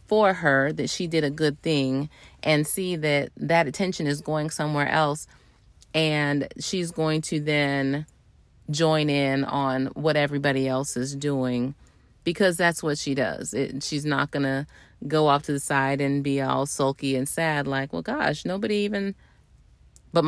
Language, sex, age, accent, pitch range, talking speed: English, female, 30-49, American, 145-220 Hz, 165 wpm